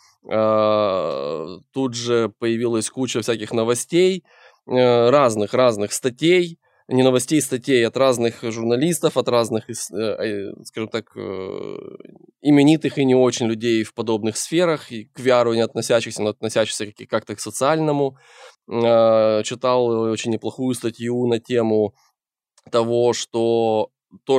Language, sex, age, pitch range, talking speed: Russian, male, 20-39, 110-130 Hz, 110 wpm